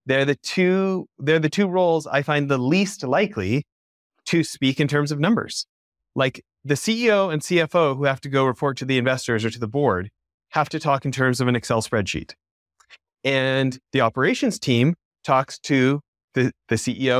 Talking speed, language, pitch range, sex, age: 180 wpm, English, 125-160 Hz, male, 30-49